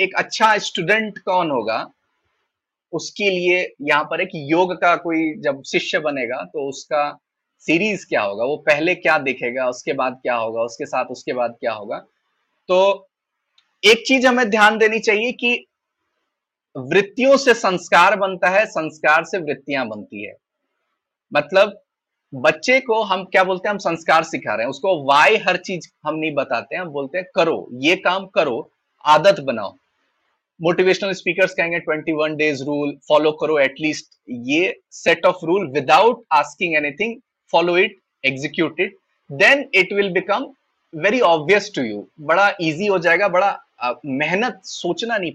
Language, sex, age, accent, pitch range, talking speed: Hindi, male, 30-49, native, 155-205 Hz, 120 wpm